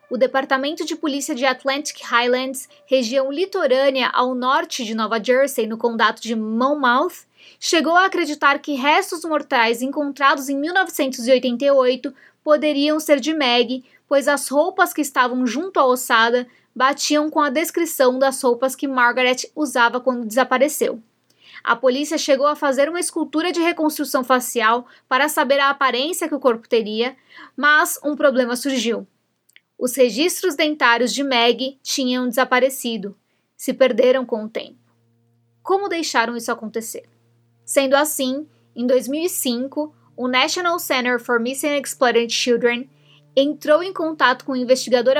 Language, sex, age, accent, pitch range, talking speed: Portuguese, female, 20-39, Brazilian, 245-295 Hz, 140 wpm